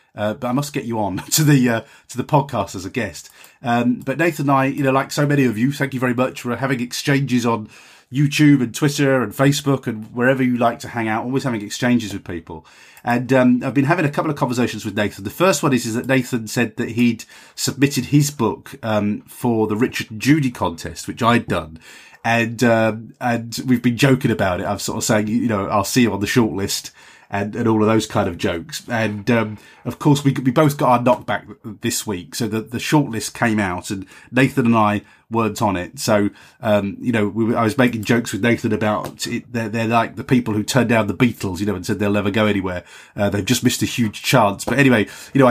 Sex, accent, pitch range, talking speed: male, British, 105-130 Hz, 240 wpm